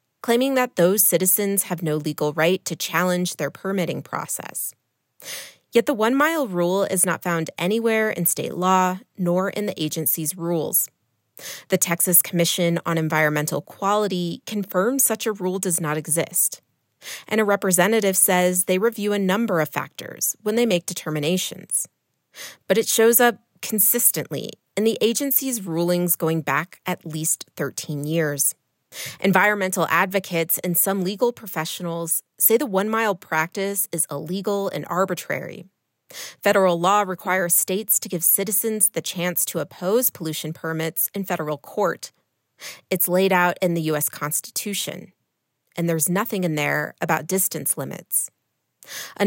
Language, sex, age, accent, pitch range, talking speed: English, female, 30-49, American, 170-205 Hz, 140 wpm